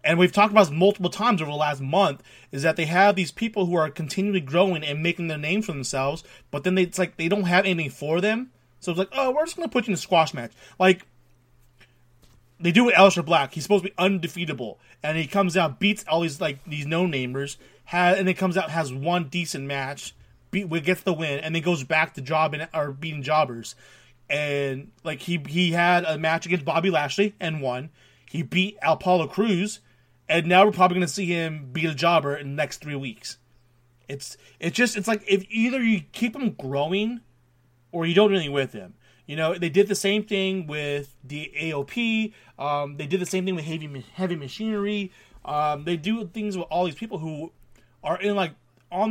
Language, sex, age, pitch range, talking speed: English, male, 30-49, 140-190 Hz, 215 wpm